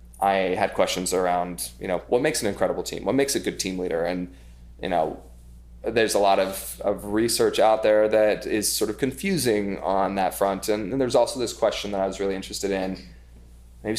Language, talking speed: English, 210 wpm